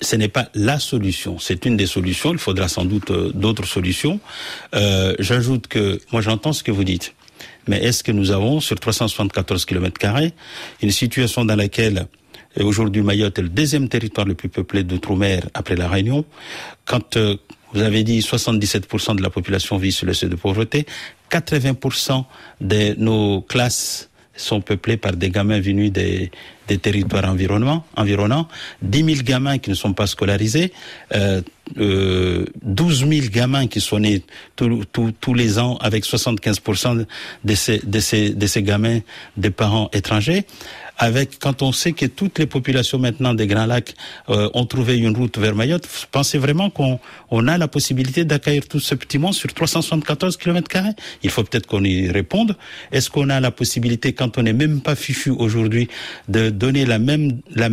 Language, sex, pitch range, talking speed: French, male, 105-135 Hz, 175 wpm